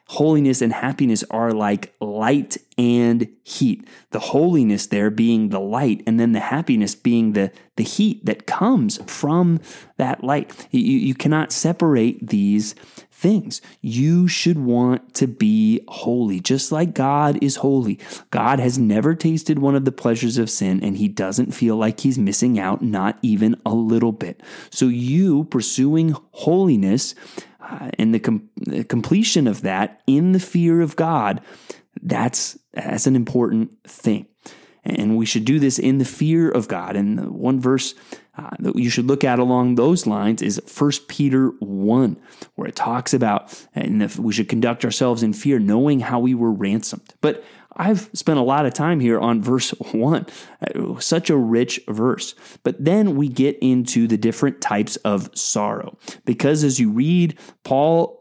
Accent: American